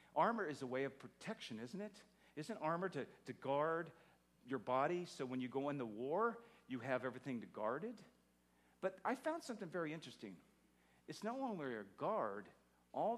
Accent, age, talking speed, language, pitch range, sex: American, 50-69, 180 wpm, English, 115-195 Hz, male